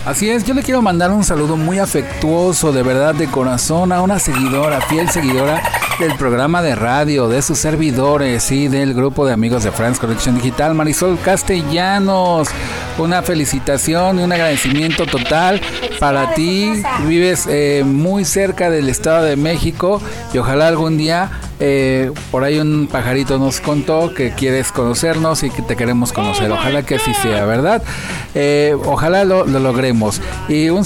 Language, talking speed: Spanish, 160 wpm